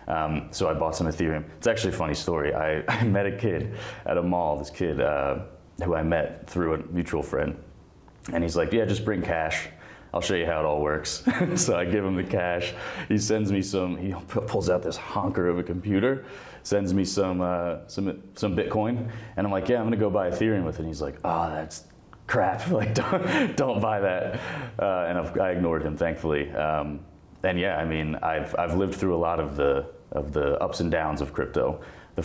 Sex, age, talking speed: male, 30-49, 220 wpm